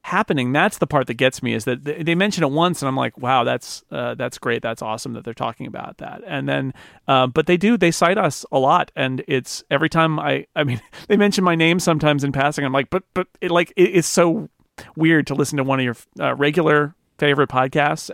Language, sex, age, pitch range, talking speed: English, male, 40-59, 125-160 Hz, 240 wpm